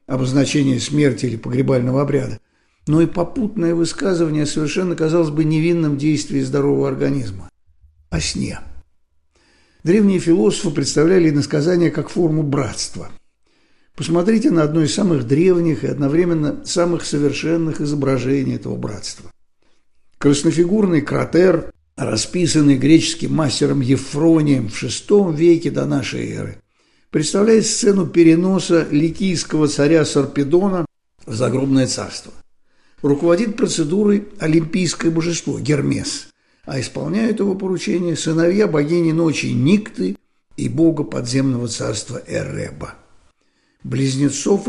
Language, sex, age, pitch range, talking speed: Russian, male, 60-79, 140-175 Hz, 105 wpm